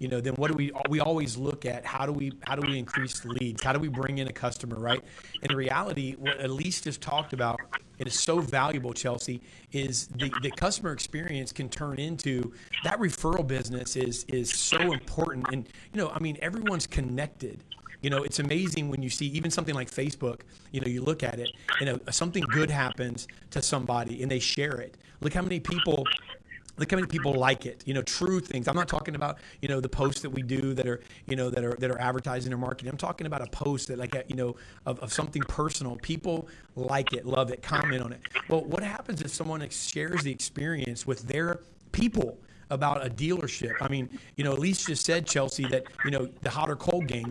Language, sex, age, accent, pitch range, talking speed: English, male, 40-59, American, 130-155 Hz, 225 wpm